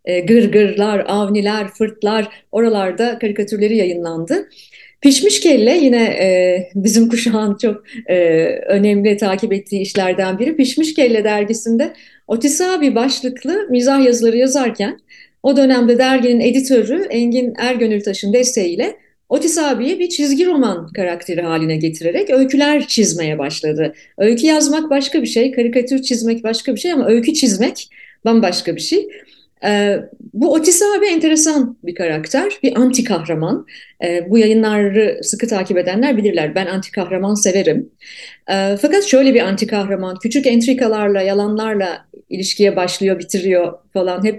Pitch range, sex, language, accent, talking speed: 190-265 Hz, female, Turkish, native, 130 wpm